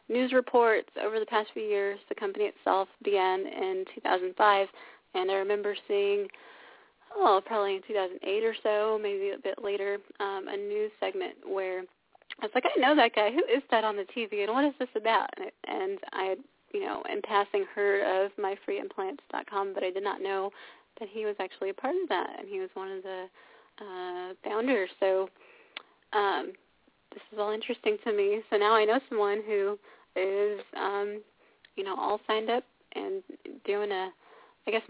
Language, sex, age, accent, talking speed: English, female, 20-39, American, 185 wpm